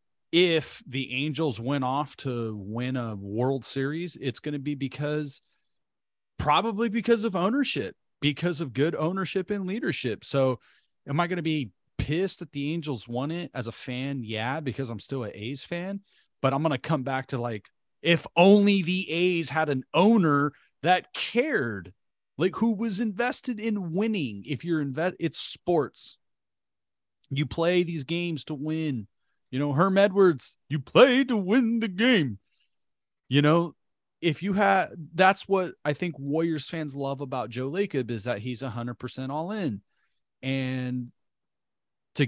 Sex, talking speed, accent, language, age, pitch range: male, 165 wpm, American, English, 30-49, 130-175 Hz